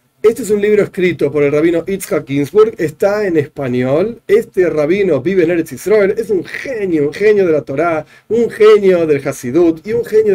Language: Spanish